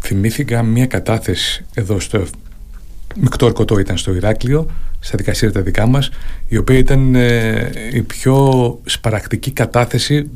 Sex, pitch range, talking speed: male, 100-130 Hz, 120 wpm